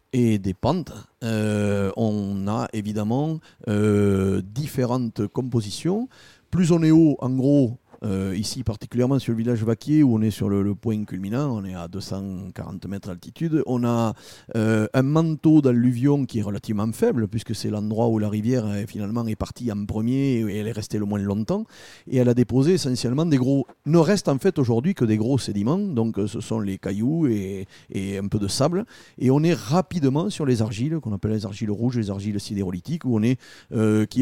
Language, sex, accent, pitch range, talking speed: French, male, French, 110-145 Hz, 195 wpm